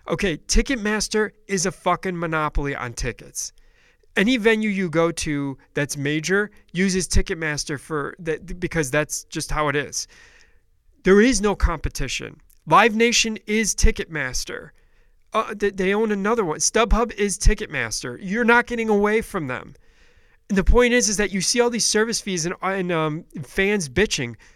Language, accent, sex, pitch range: English, American, male, 155-215 Hz